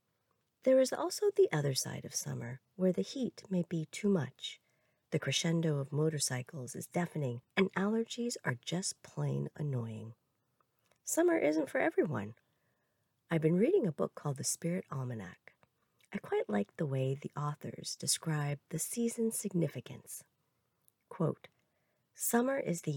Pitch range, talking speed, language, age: 135-195 Hz, 145 wpm, English, 40-59